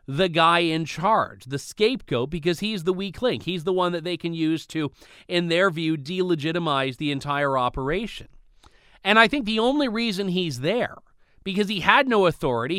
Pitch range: 145-190 Hz